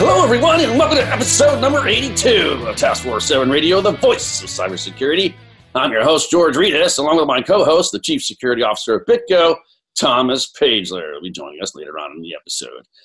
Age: 40-59